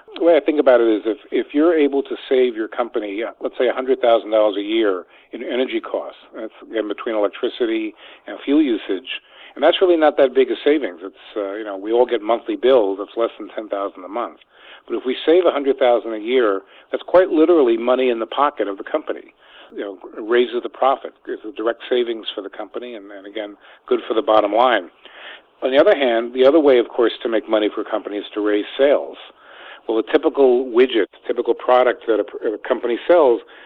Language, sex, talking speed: English, male, 220 wpm